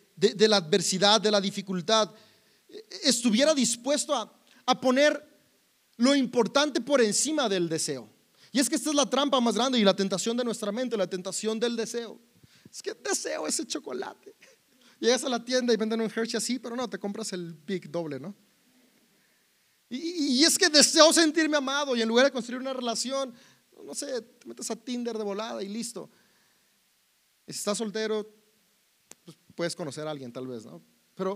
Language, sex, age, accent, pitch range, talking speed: Spanish, male, 30-49, Mexican, 165-245 Hz, 180 wpm